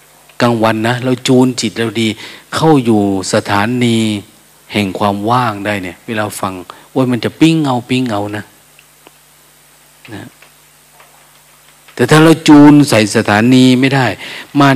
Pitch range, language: 110-145 Hz, Thai